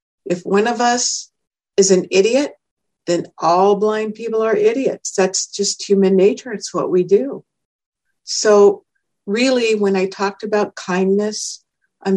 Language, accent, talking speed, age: English, American, 145 wpm, 60-79